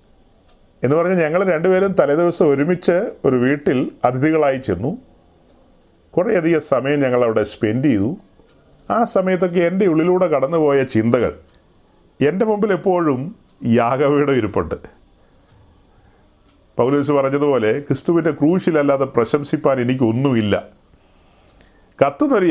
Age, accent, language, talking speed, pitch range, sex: 40-59, native, Malayalam, 90 wpm, 115-170 Hz, male